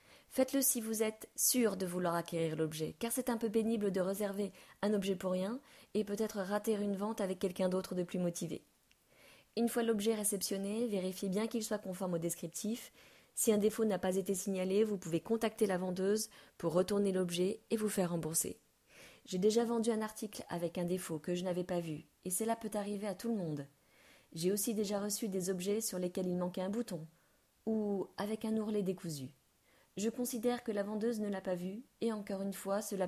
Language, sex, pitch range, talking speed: French, female, 175-220 Hz, 205 wpm